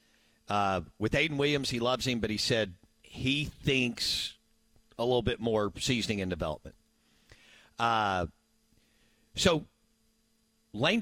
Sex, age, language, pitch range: male, 50-69, English, 100-120 Hz